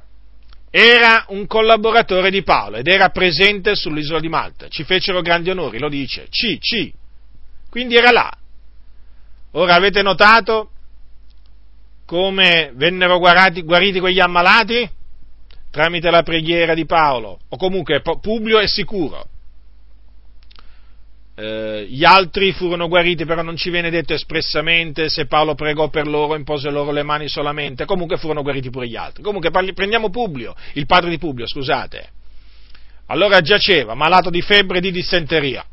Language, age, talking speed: Italian, 40-59, 140 wpm